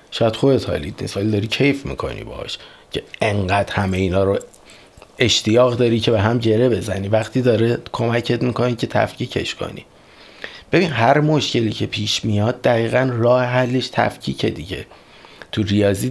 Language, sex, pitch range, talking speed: Persian, male, 105-125 Hz, 150 wpm